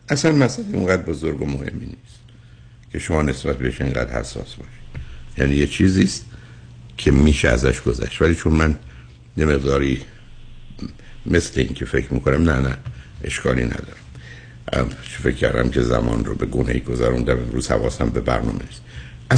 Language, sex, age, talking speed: Persian, male, 60-79, 150 wpm